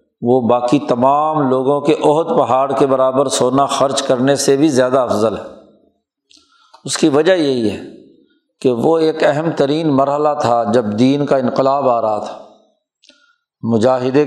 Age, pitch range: 50-69, 130-155 Hz